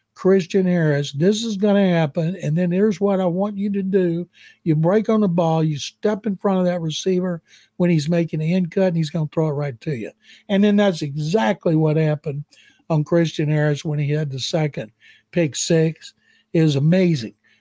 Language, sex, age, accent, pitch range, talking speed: English, male, 60-79, American, 150-185 Hz, 210 wpm